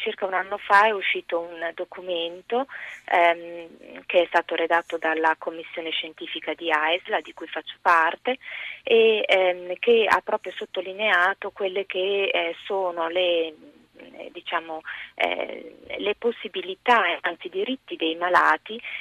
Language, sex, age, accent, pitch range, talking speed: Italian, female, 20-39, native, 165-205 Hz, 125 wpm